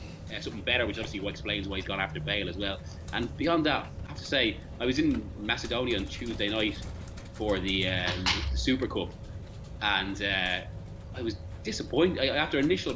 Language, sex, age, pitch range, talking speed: English, male, 20-39, 90-110 Hz, 195 wpm